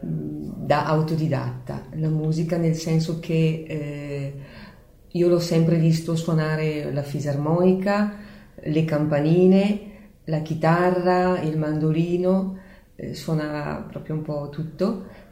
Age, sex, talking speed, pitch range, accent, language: 30-49, female, 105 wpm, 145-175 Hz, native, Italian